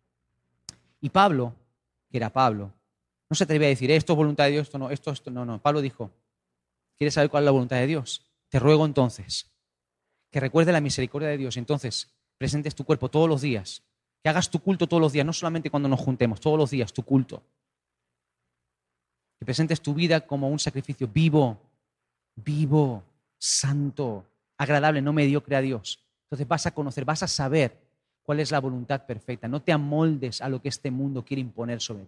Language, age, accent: Spanish, 30-49, Spanish